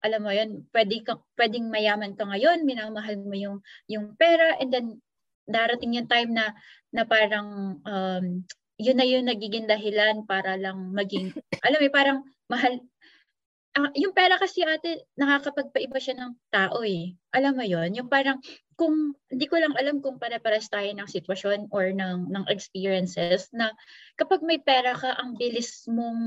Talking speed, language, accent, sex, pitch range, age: 165 wpm, Filipino, native, female, 210-275 Hz, 20-39